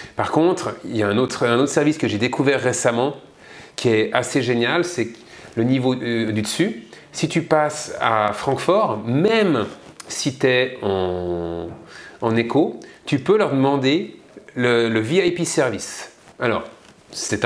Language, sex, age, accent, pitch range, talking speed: French, male, 30-49, French, 115-145 Hz, 160 wpm